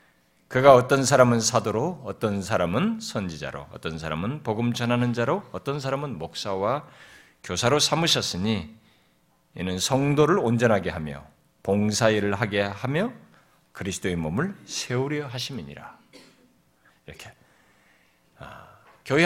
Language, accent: Korean, native